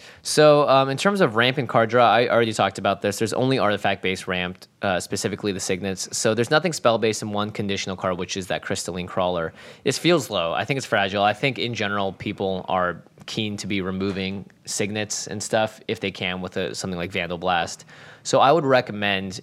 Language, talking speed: English, 215 wpm